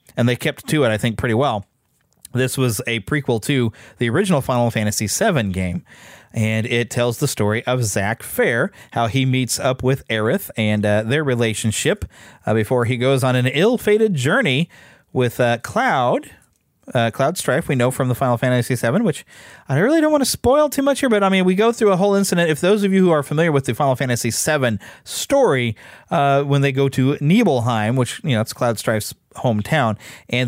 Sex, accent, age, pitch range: male, American, 30-49, 115-140 Hz